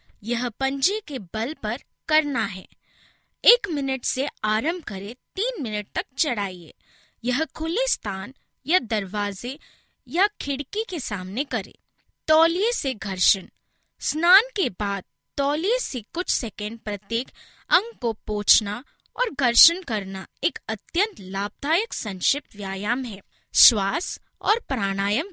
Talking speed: 125 wpm